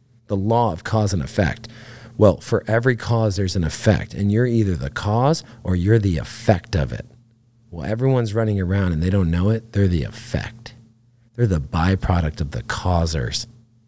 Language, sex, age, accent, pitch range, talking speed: English, male, 40-59, American, 100-120 Hz, 180 wpm